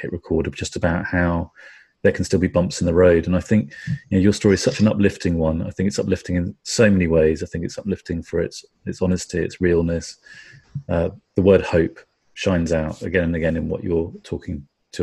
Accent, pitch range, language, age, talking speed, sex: British, 80-95 Hz, English, 30-49, 225 wpm, male